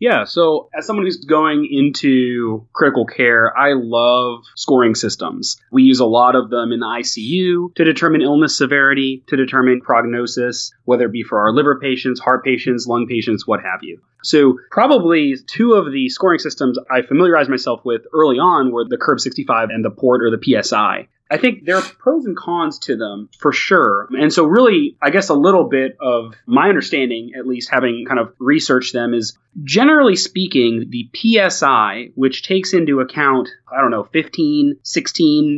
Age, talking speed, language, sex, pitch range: 30-49, 180 wpm, English, male, 125-165 Hz